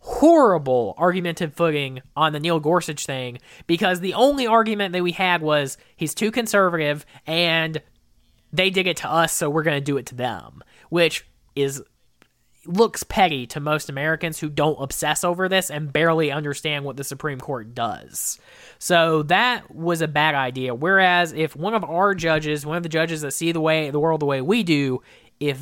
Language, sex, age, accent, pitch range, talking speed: English, male, 20-39, American, 145-185 Hz, 185 wpm